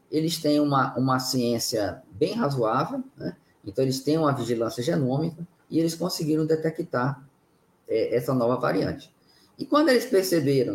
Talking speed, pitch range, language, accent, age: 145 wpm, 120-160 Hz, Portuguese, Brazilian, 20-39